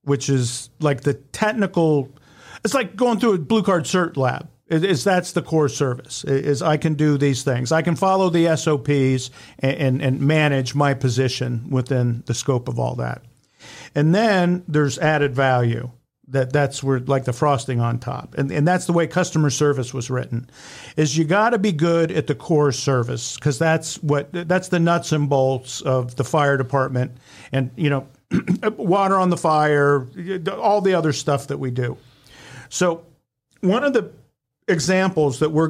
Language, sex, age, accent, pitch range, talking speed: English, male, 50-69, American, 130-165 Hz, 180 wpm